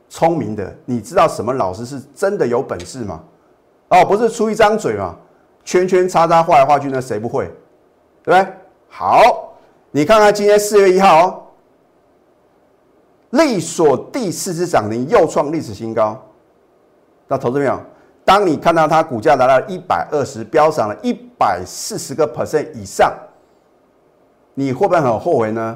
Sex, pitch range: male, 120-185 Hz